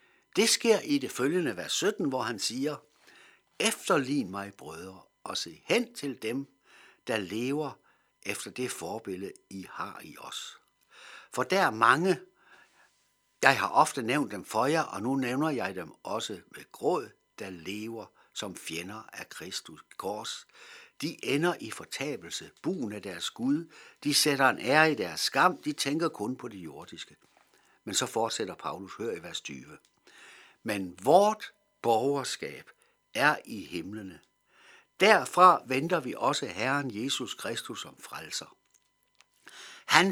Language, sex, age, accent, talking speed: Danish, male, 60-79, native, 145 wpm